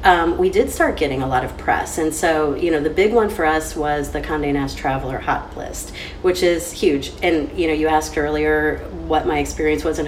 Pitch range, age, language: 150-235 Hz, 30-49, English